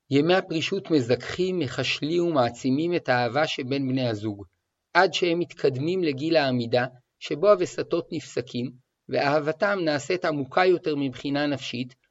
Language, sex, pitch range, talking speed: Hebrew, male, 130-165 Hz, 120 wpm